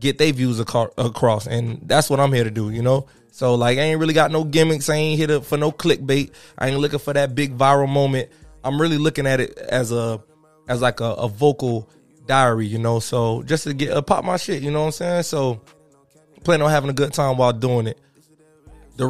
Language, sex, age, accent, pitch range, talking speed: English, male, 20-39, American, 120-145 Hz, 240 wpm